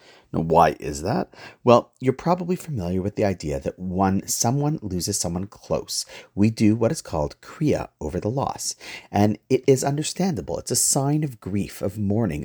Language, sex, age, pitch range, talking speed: English, male, 40-59, 95-135 Hz, 180 wpm